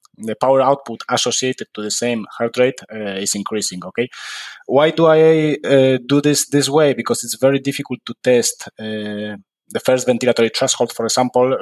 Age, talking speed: 20-39, 175 wpm